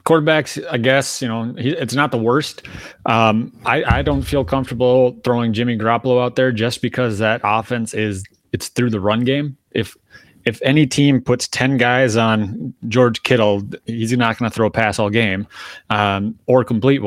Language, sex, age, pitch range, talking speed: English, male, 30-49, 110-125 Hz, 185 wpm